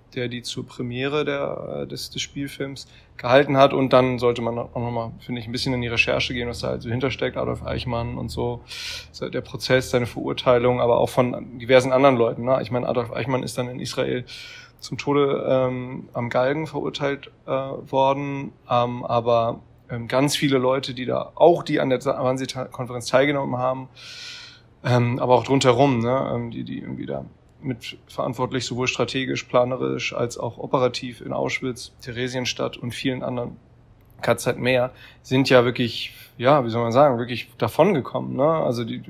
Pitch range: 120-130 Hz